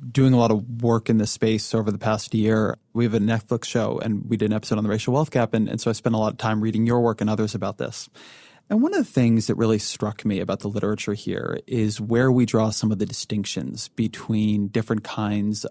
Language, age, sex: English, 20-39, male